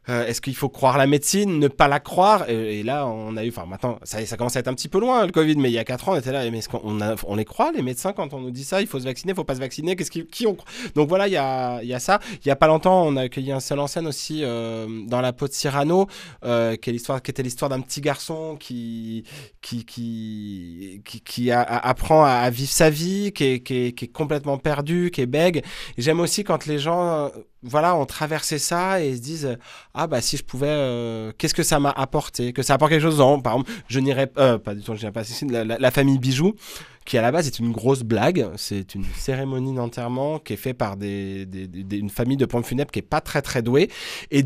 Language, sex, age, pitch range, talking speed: French, male, 20-39, 120-155 Hz, 280 wpm